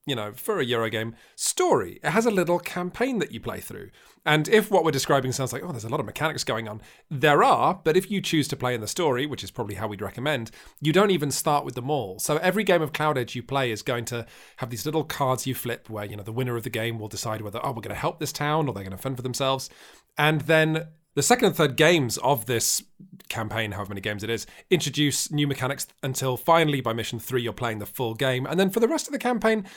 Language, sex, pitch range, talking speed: English, male, 120-175 Hz, 265 wpm